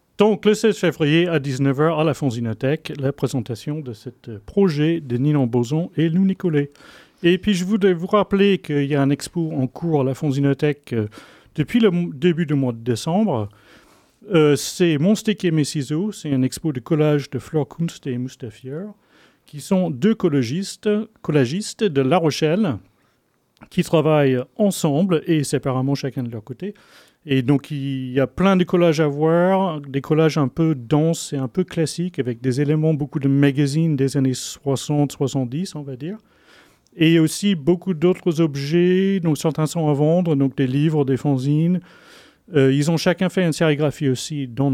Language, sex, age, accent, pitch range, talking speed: French, male, 40-59, French, 135-175 Hz, 180 wpm